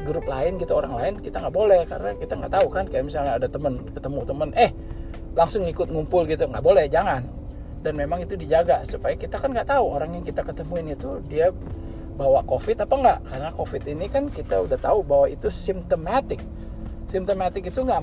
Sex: male